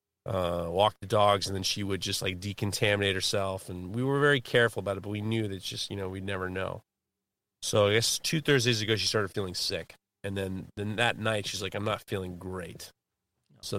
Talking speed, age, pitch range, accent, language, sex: 225 wpm, 30-49, 95-115 Hz, American, English, male